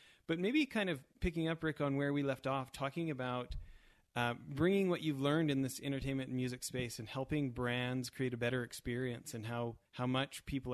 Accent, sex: American, male